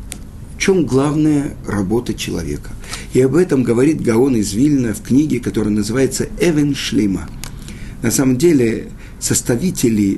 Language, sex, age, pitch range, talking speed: Russian, male, 50-69, 100-165 Hz, 125 wpm